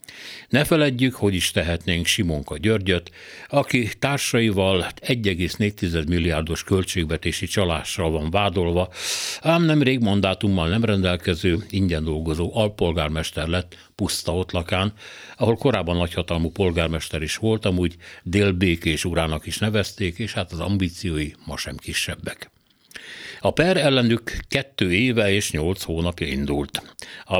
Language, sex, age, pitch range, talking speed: Hungarian, male, 60-79, 85-105 Hz, 115 wpm